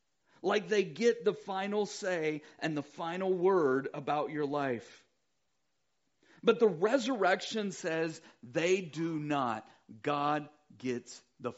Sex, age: male, 40-59